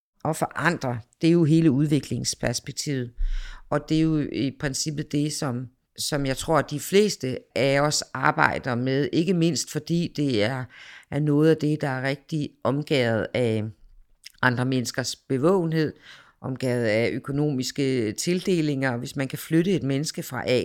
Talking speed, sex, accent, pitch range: 160 wpm, female, native, 130-160 Hz